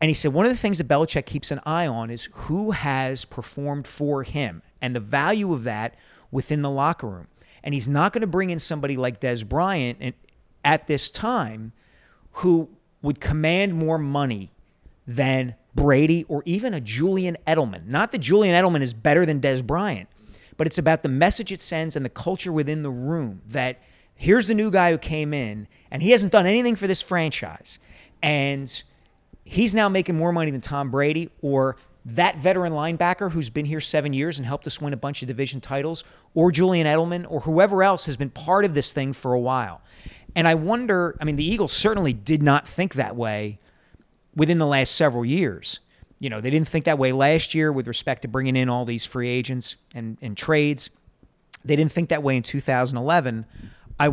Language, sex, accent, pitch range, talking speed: English, male, American, 130-170 Hz, 200 wpm